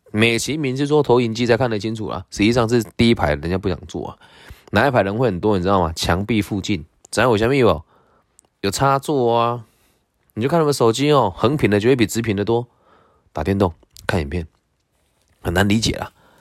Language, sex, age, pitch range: Chinese, male, 20-39, 95-130 Hz